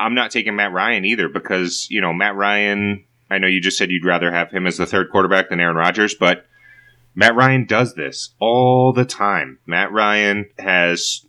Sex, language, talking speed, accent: male, English, 200 wpm, American